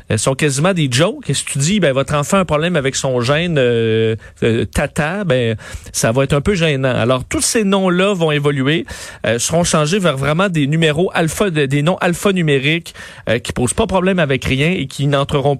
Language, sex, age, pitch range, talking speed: French, male, 40-59, 125-160 Hz, 215 wpm